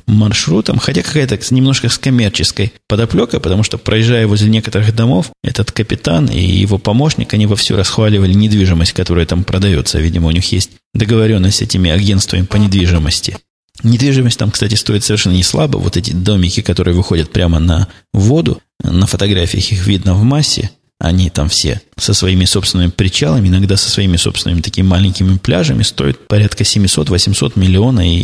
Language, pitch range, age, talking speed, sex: Russian, 95-110 Hz, 20-39, 155 wpm, male